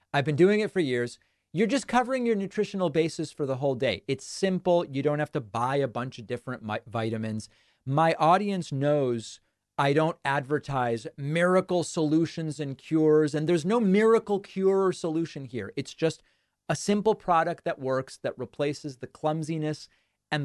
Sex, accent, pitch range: male, American, 125-170 Hz